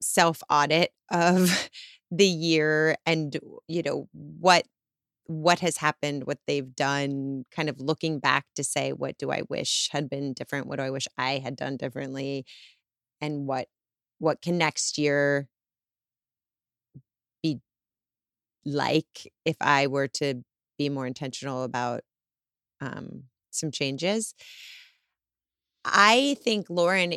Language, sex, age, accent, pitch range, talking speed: English, female, 30-49, American, 140-165 Hz, 125 wpm